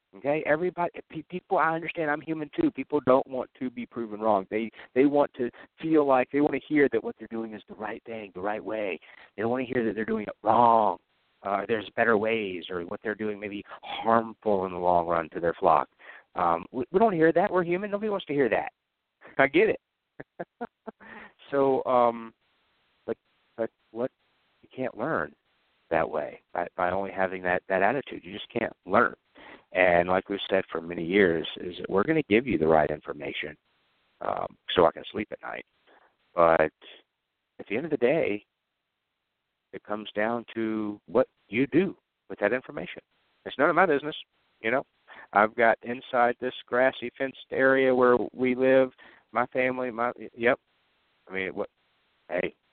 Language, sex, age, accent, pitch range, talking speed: English, male, 50-69, American, 100-145 Hz, 190 wpm